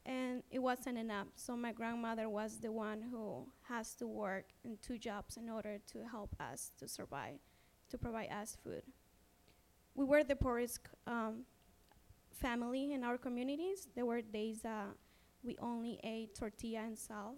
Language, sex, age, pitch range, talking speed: English, female, 20-39, 225-265 Hz, 165 wpm